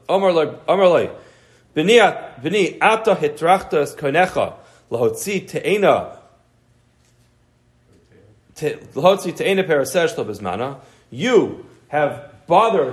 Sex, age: male, 40-59